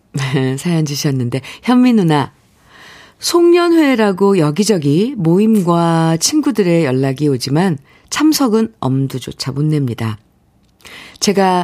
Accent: native